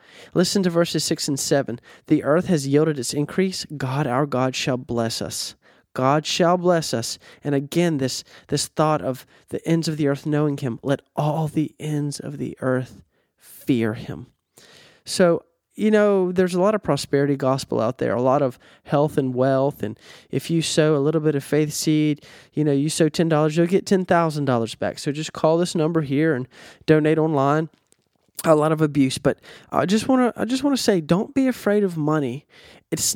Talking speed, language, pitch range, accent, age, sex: 190 wpm, English, 140-170 Hz, American, 20-39, male